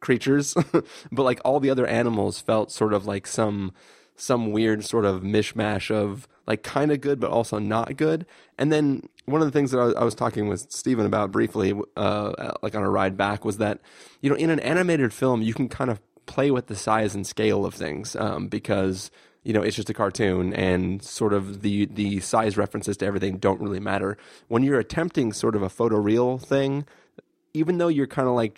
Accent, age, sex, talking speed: American, 20-39, male, 210 wpm